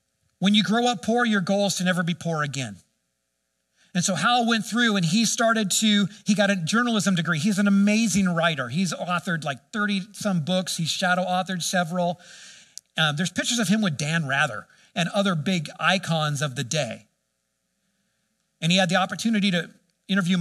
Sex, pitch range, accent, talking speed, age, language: male, 150-205 Hz, American, 185 wpm, 50-69, English